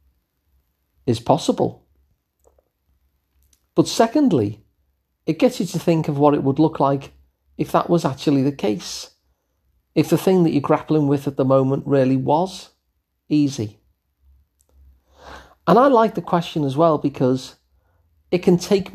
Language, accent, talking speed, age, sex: English, British, 145 wpm, 40-59, male